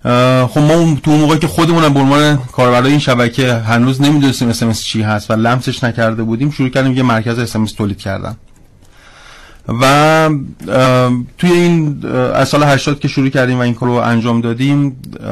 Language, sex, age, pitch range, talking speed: Persian, male, 30-49, 115-135 Hz, 155 wpm